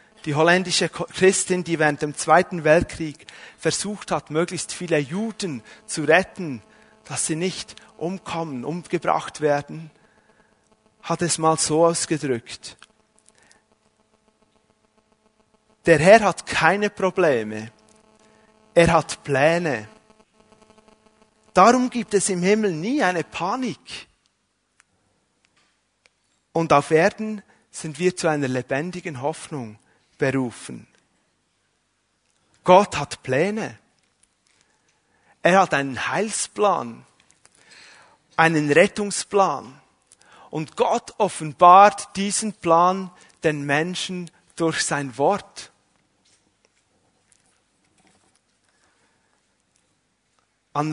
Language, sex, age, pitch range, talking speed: German, male, 30-49, 150-205 Hz, 85 wpm